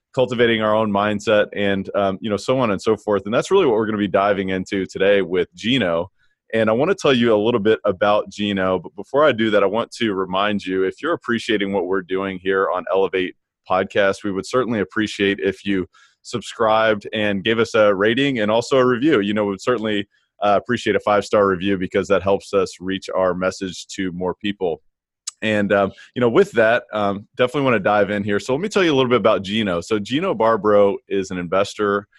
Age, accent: 20-39, American